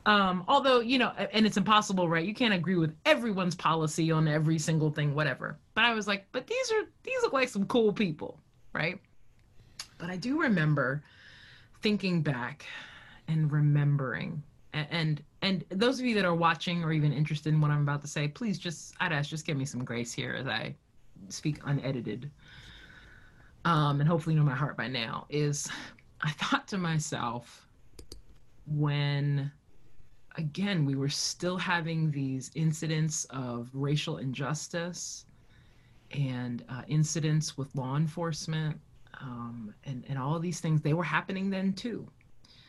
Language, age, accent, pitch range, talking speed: English, 20-39, American, 135-175 Hz, 160 wpm